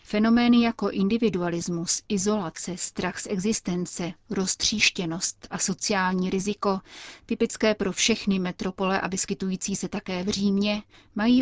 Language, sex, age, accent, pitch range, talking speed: Czech, female, 30-49, native, 185-215 Hz, 115 wpm